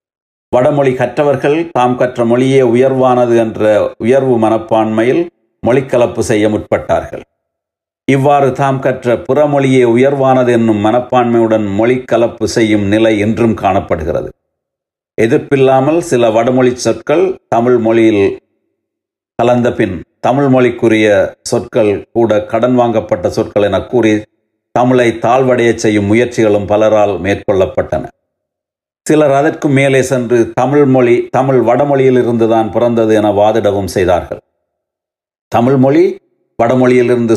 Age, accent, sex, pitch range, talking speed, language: 60-79, native, male, 110-130 Hz, 95 wpm, Tamil